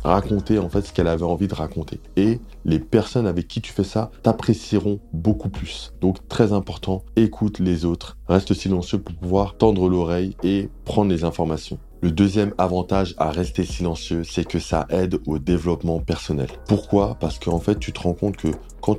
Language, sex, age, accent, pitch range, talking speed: French, male, 20-39, French, 85-100 Hz, 190 wpm